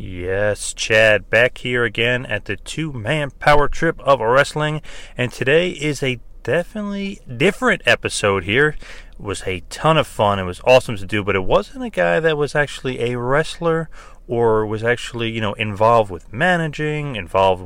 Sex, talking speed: male, 170 wpm